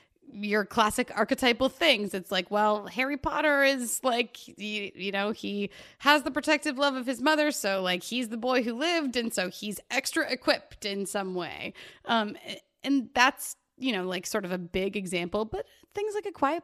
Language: English